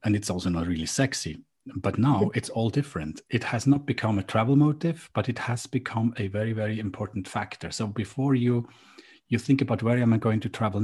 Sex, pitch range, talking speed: male, 100-130 Hz, 215 wpm